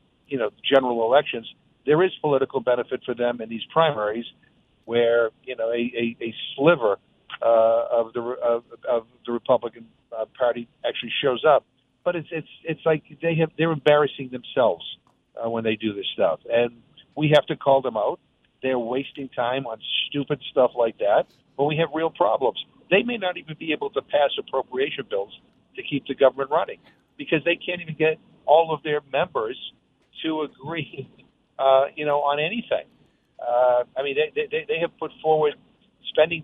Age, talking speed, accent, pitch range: 50-69, 175 wpm, American, 125-160 Hz